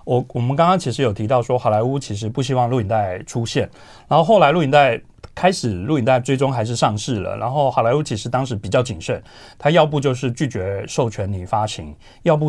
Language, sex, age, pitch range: Chinese, male, 30-49, 110-145 Hz